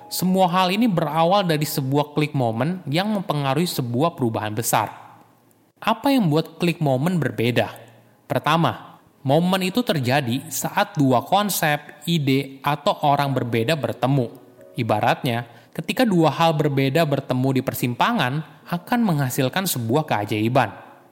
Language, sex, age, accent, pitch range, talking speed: Indonesian, male, 20-39, native, 125-175 Hz, 120 wpm